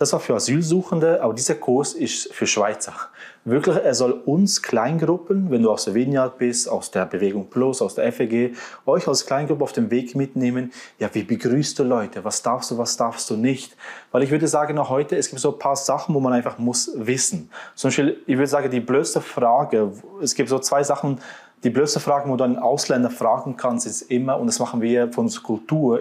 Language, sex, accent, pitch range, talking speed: German, male, German, 120-150 Hz, 215 wpm